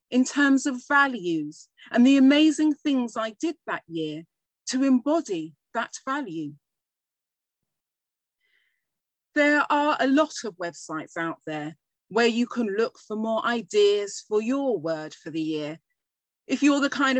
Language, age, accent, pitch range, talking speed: English, 40-59, British, 170-270 Hz, 145 wpm